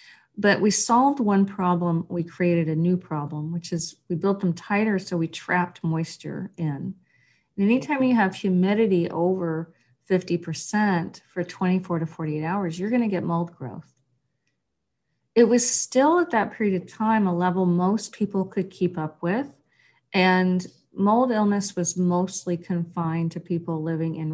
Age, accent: 40-59, American